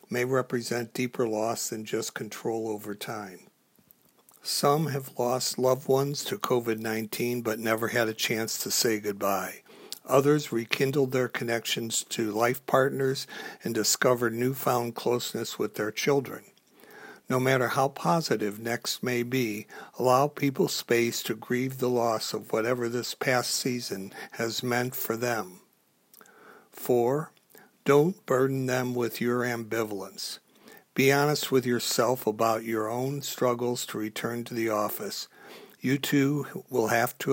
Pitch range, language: 115-135 Hz, English